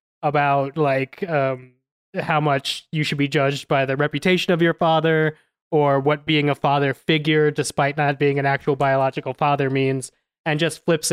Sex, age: male, 20-39